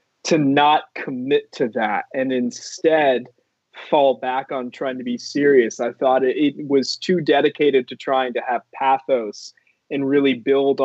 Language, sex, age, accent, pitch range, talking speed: English, male, 20-39, American, 125-145 Hz, 160 wpm